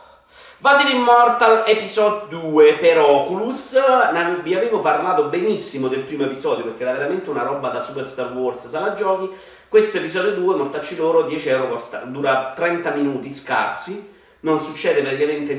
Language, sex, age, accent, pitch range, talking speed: Italian, male, 40-59, native, 125-190 Hz, 155 wpm